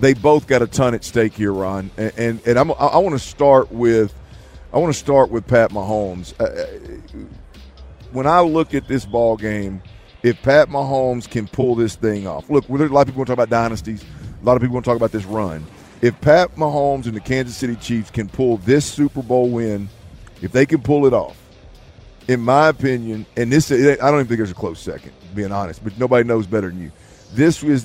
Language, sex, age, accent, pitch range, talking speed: English, male, 50-69, American, 110-130 Hz, 225 wpm